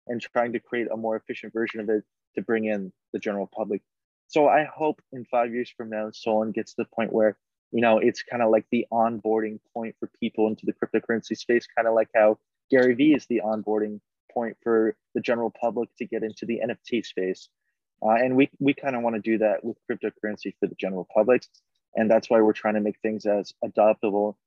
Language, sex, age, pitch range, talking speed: English, male, 20-39, 105-120 Hz, 220 wpm